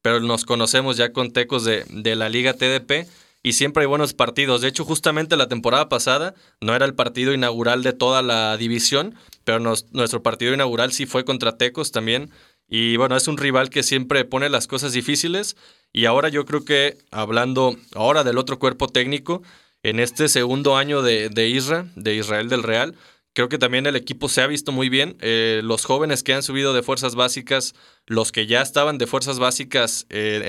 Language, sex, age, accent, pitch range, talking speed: Spanish, male, 20-39, Mexican, 115-135 Hz, 195 wpm